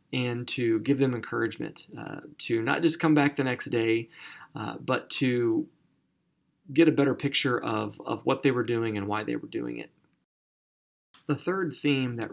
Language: English